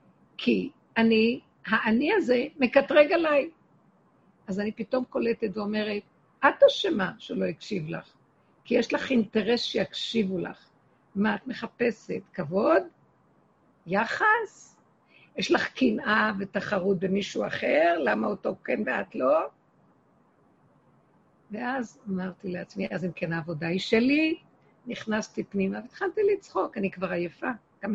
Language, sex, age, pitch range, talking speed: Hebrew, female, 50-69, 205-275 Hz, 120 wpm